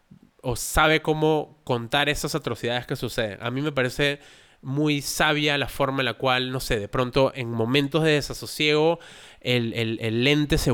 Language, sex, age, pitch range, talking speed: Spanish, male, 20-39, 120-145 Hz, 180 wpm